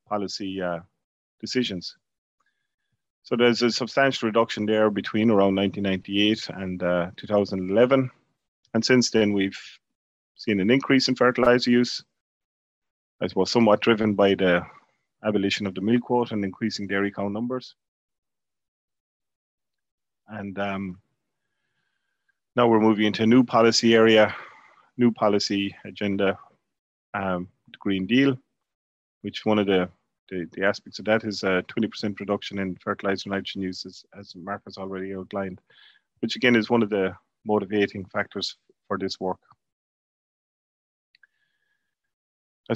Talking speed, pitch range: 130 wpm, 100-120 Hz